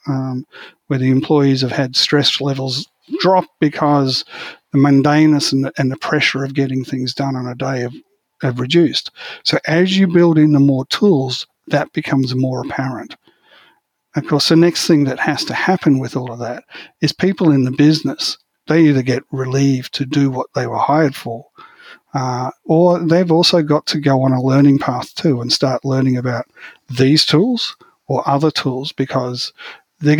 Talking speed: 180 wpm